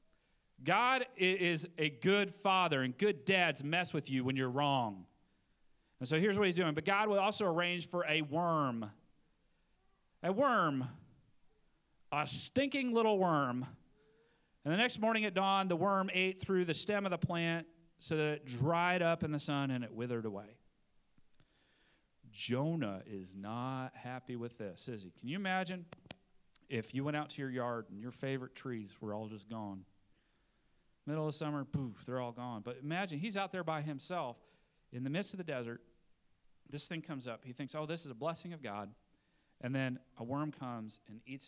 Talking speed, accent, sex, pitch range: 185 wpm, American, male, 125-180 Hz